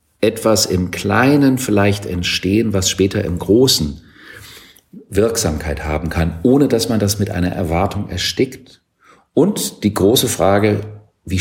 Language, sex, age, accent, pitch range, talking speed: German, male, 50-69, German, 85-110 Hz, 130 wpm